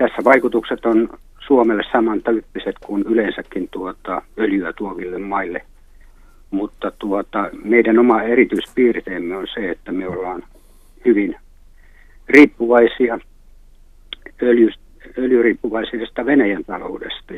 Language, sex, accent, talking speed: Finnish, male, native, 95 wpm